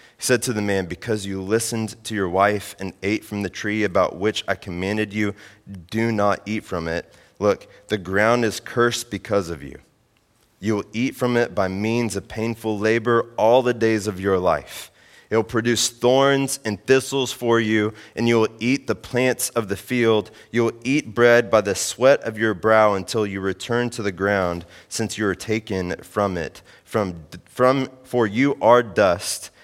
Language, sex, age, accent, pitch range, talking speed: English, male, 30-49, American, 95-120 Hz, 190 wpm